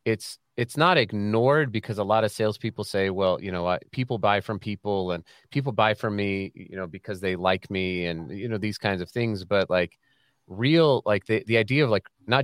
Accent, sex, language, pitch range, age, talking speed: American, male, English, 95-120 Hz, 30-49, 220 wpm